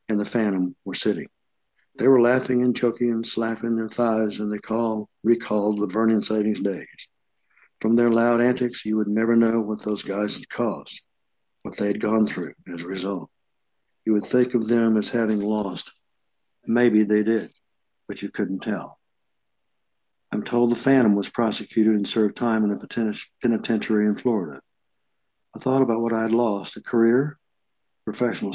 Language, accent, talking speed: English, American, 170 wpm